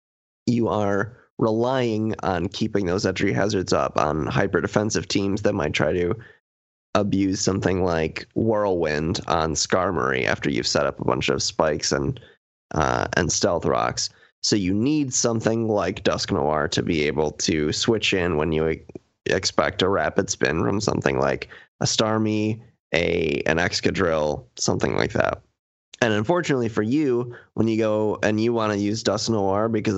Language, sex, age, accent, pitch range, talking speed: English, male, 20-39, American, 100-115 Hz, 160 wpm